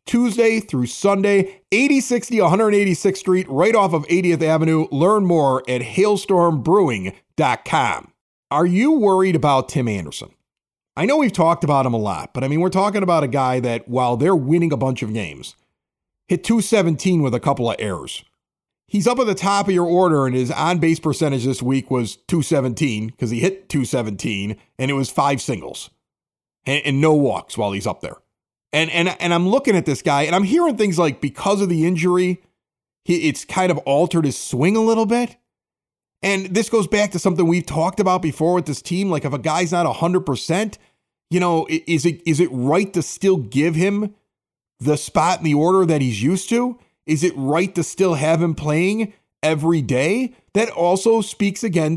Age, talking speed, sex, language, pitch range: 40-59, 190 wpm, male, English, 140-195 Hz